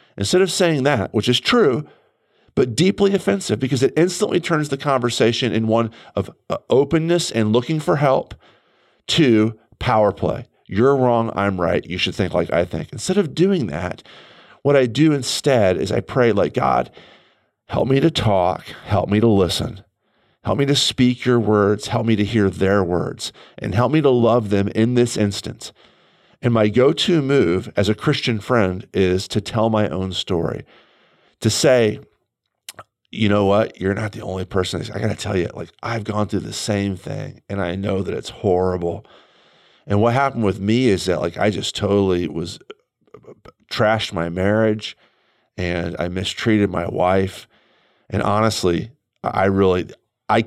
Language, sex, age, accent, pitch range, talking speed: English, male, 40-59, American, 95-125 Hz, 175 wpm